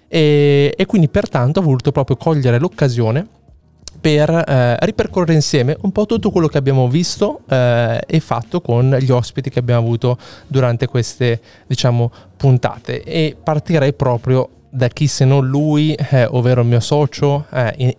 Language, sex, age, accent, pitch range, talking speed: Italian, male, 20-39, native, 115-135 Hz, 160 wpm